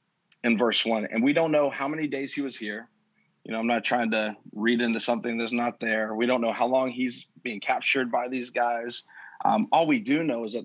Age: 30-49